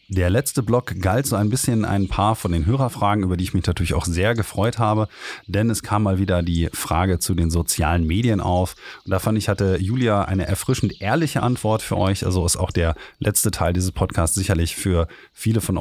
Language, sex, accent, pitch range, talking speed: German, male, German, 85-110 Hz, 215 wpm